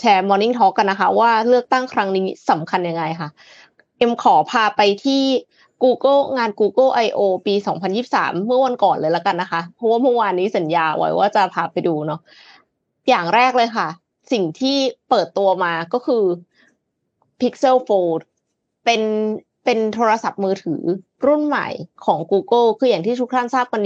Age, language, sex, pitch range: 20-39, Thai, female, 185-245 Hz